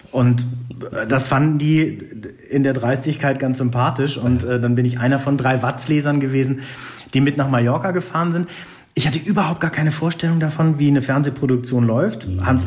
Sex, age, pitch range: male, 40-59, 120-155 Hz